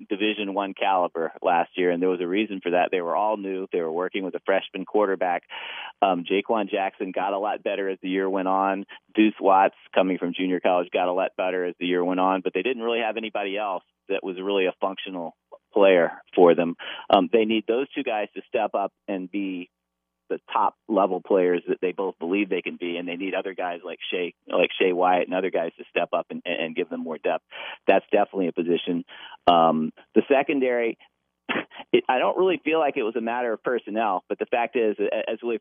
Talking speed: 220 wpm